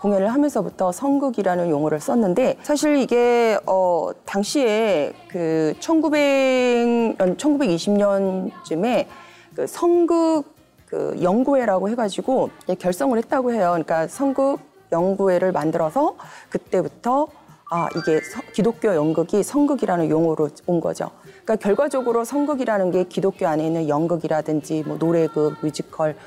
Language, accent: Korean, native